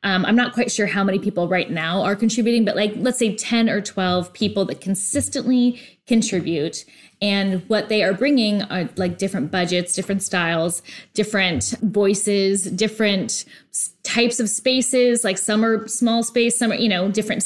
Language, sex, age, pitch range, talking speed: English, female, 10-29, 190-245 Hz, 170 wpm